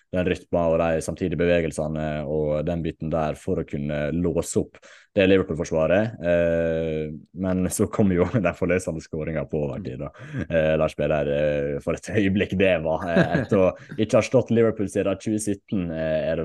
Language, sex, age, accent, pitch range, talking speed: English, male, 20-39, Norwegian, 80-90 Hz, 140 wpm